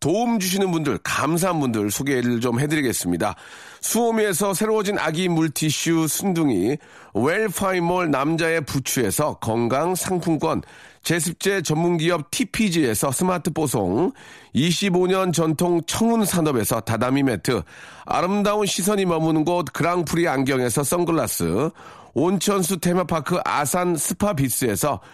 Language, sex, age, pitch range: Korean, male, 40-59, 155-200 Hz